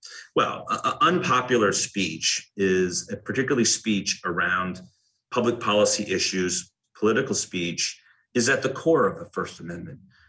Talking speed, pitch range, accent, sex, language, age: 120 wpm, 100-120 Hz, American, male, English, 30-49